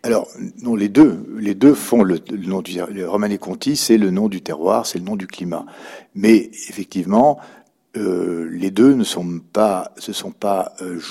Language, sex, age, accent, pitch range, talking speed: French, male, 60-79, French, 90-115 Hz, 190 wpm